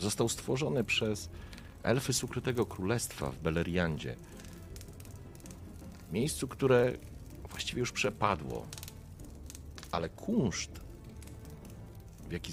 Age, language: 40-59, Polish